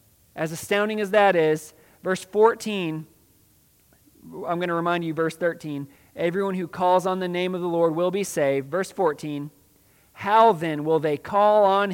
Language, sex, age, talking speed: English, male, 40-59, 170 wpm